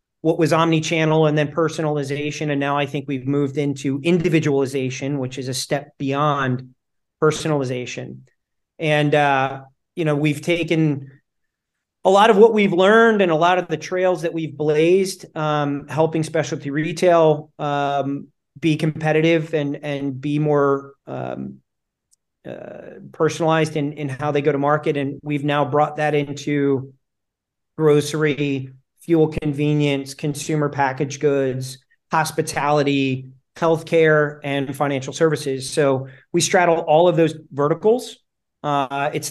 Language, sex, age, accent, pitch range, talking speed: English, male, 40-59, American, 140-160 Hz, 135 wpm